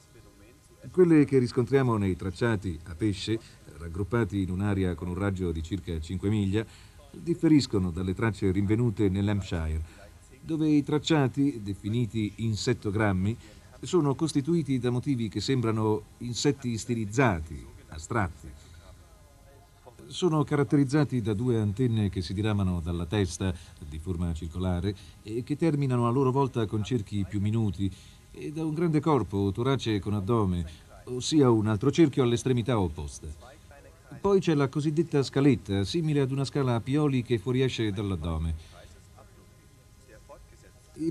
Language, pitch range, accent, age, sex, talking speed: Italian, 95-135 Hz, native, 40-59, male, 130 wpm